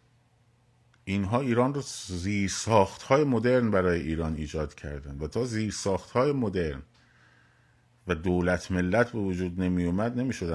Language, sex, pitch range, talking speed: Persian, male, 80-110 Hz, 130 wpm